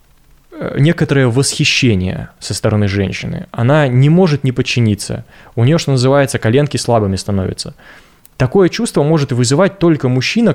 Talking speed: 130 wpm